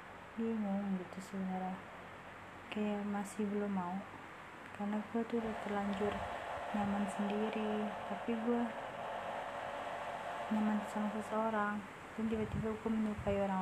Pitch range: 200-215 Hz